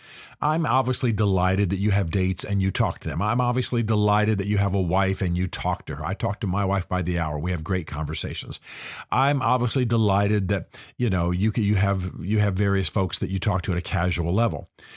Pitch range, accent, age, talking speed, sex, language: 95-125 Hz, American, 50-69, 235 wpm, male, English